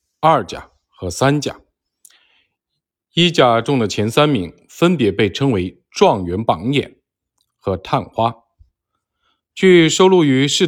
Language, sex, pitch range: Chinese, male, 115-155 Hz